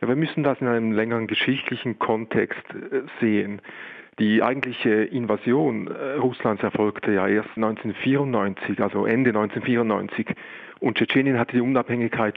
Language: German